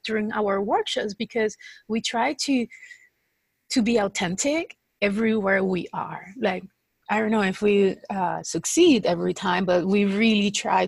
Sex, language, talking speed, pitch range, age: female, English, 150 wpm, 190-225 Hz, 30-49